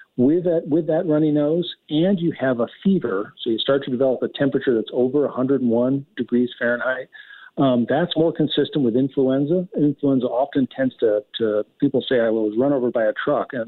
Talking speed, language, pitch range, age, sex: 195 wpm, English, 120-150 Hz, 50-69, male